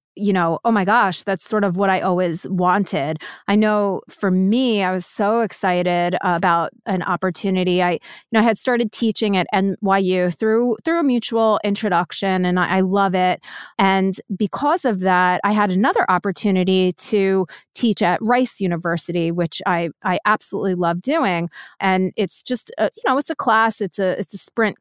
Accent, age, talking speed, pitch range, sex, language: American, 30-49, 180 wpm, 185-220 Hz, female, English